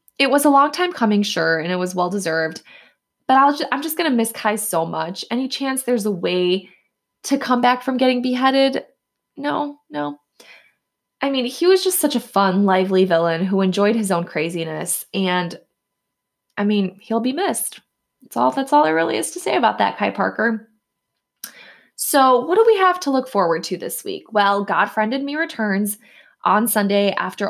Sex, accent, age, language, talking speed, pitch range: female, American, 20-39, English, 185 wpm, 185-250 Hz